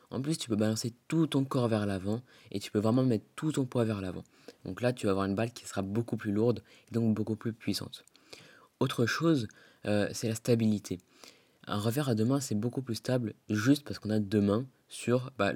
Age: 20-39